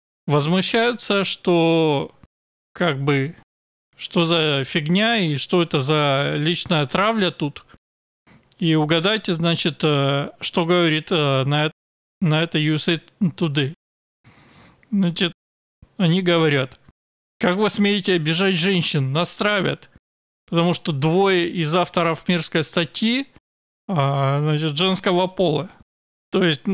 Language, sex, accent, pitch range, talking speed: Russian, male, native, 150-185 Hz, 100 wpm